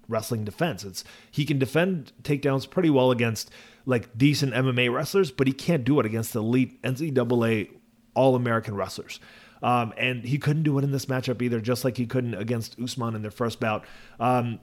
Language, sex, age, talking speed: English, male, 30-49, 185 wpm